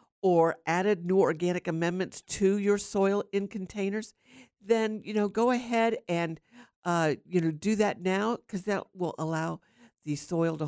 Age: 50-69